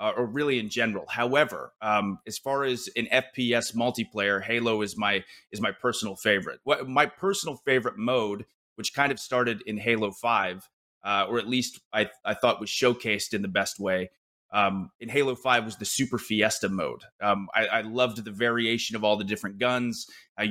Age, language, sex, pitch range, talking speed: 30-49, English, male, 105-125 Hz, 195 wpm